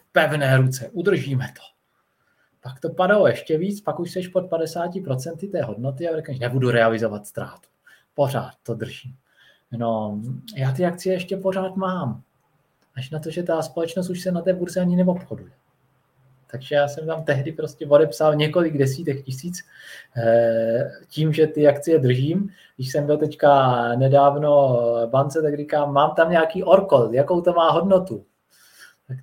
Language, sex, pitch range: Czech, male, 130-180 Hz